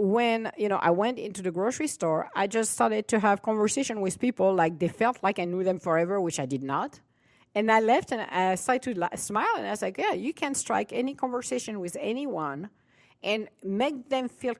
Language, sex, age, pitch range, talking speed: English, female, 50-69, 170-225 Hz, 220 wpm